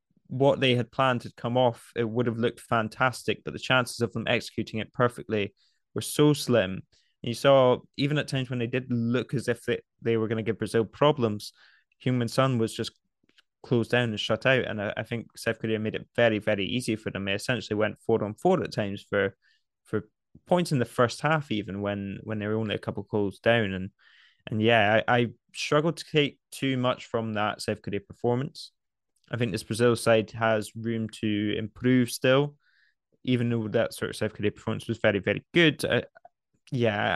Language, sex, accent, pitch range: English, male, British, 110-125 Hz